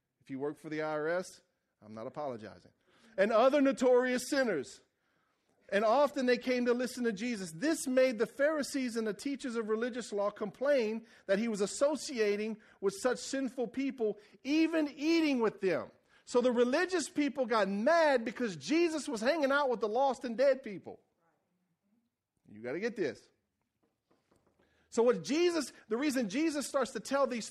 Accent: American